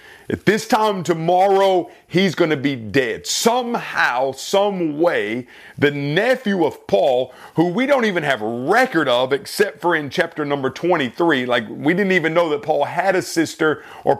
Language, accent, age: English, American, 40-59